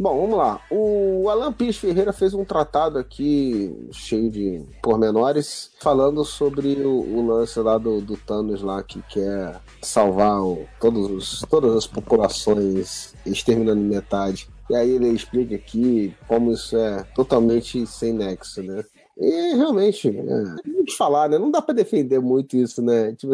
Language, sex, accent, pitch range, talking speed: Portuguese, male, Brazilian, 110-150 Hz, 145 wpm